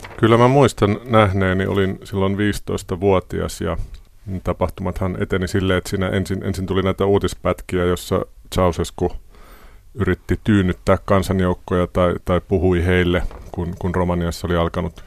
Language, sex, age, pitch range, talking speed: Finnish, male, 30-49, 85-95 Hz, 125 wpm